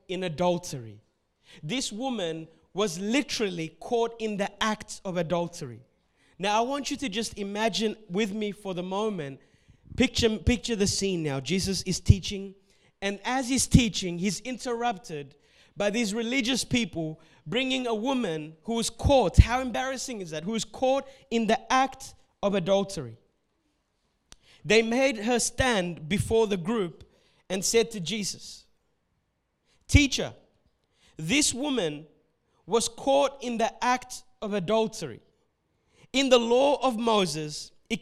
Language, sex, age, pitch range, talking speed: English, male, 30-49, 185-250 Hz, 135 wpm